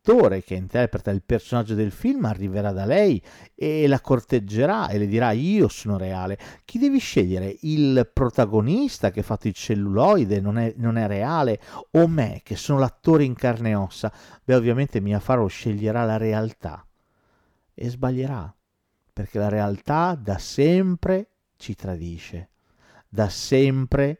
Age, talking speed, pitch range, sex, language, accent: 40-59, 145 wpm, 95-120 Hz, male, Italian, native